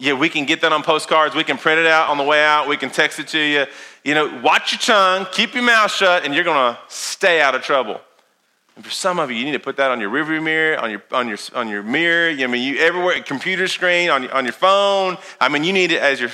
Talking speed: 285 wpm